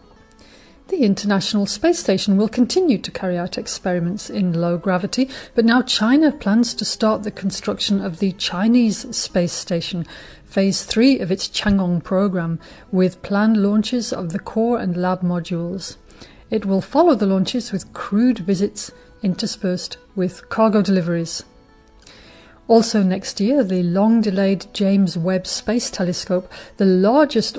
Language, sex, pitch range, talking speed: English, female, 185-225 Hz, 140 wpm